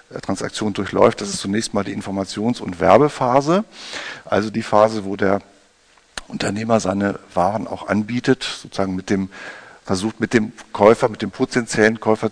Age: 50-69